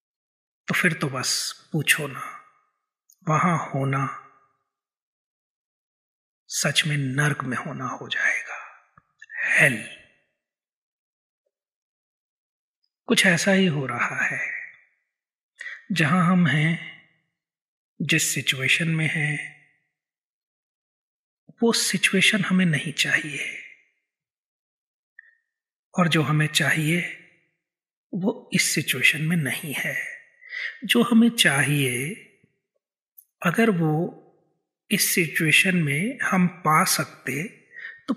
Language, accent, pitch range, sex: Hindi, native, 160-230 Hz, male